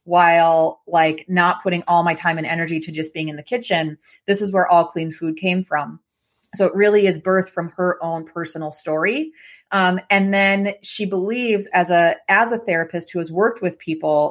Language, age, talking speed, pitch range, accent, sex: English, 30-49, 200 wpm, 170-200 Hz, American, female